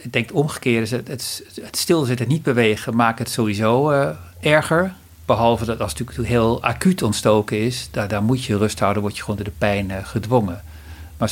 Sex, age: male, 50-69